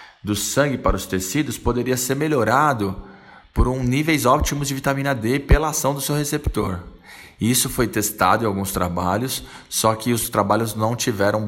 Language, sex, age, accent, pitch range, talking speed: Portuguese, male, 20-39, Brazilian, 100-130 Hz, 165 wpm